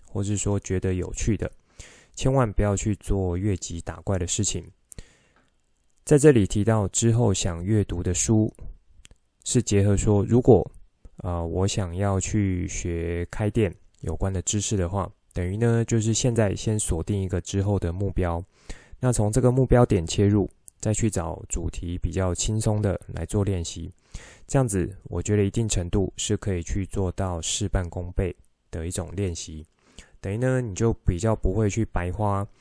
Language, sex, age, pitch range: Chinese, male, 20-39, 90-110 Hz